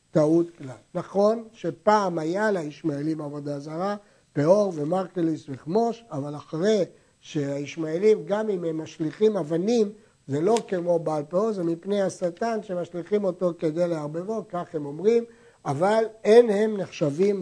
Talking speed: 130 wpm